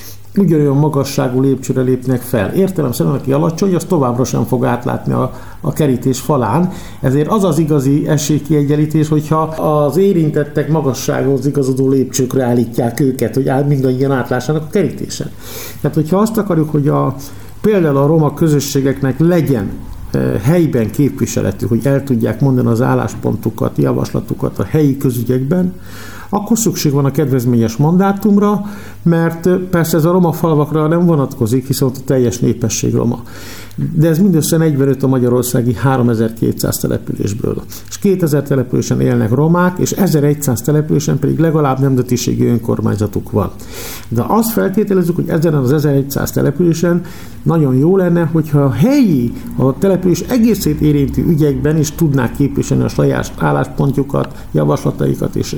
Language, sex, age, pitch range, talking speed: Hungarian, male, 60-79, 125-165 Hz, 140 wpm